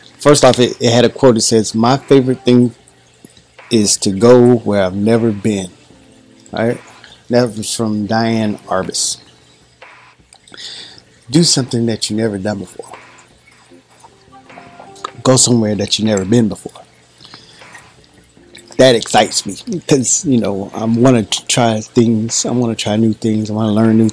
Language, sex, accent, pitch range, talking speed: English, male, American, 110-125 Hz, 150 wpm